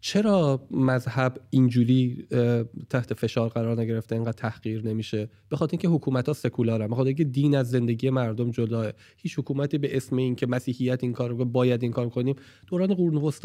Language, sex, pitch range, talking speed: English, male, 125-170 Hz, 165 wpm